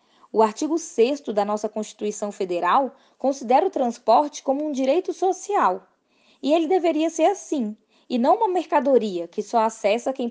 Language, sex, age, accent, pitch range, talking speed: Portuguese, female, 20-39, Brazilian, 220-315 Hz, 155 wpm